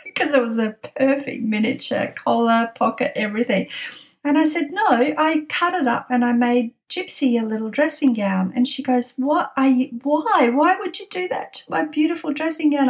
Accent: Australian